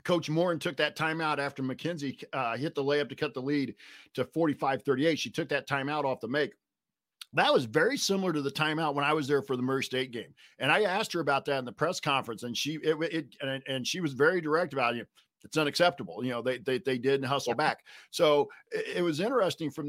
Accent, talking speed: American, 230 wpm